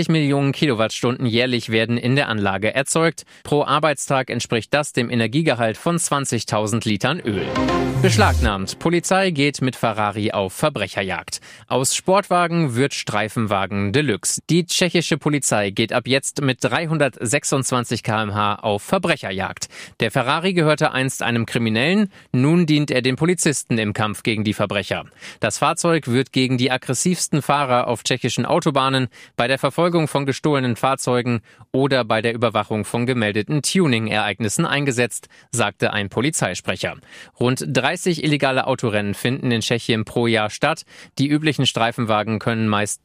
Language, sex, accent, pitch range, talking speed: German, male, German, 110-145 Hz, 140 wpm